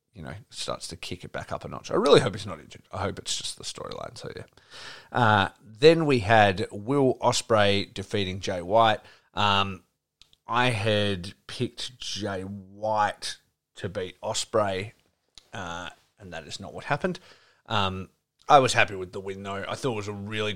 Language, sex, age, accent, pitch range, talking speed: English, male, 30-49, Australian, 100-115 Hz, 185 wpm